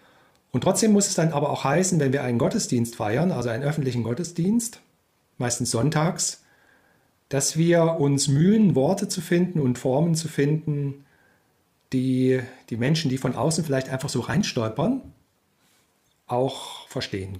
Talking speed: 145 wpm